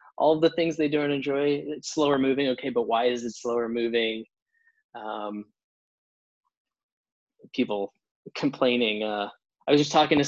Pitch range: 120-140 Hz